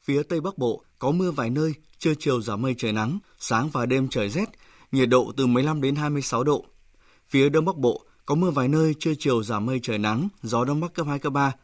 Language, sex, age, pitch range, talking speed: Vietnamese, male, 20-39, 125-150 Hz, 255 wpm